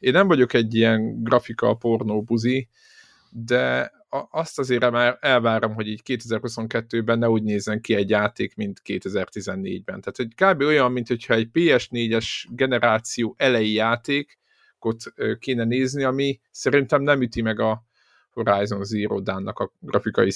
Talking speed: 135 wpm